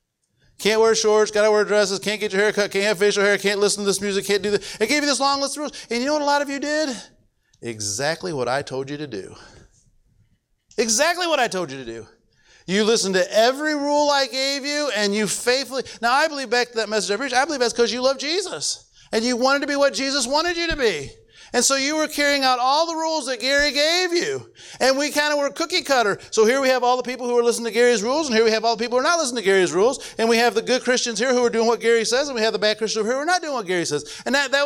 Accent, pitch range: American, 210-275 Hz